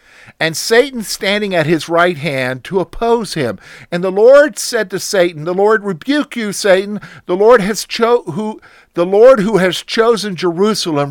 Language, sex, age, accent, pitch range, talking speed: English, male, 50-69, American, 140-195 Hz, 175 wpm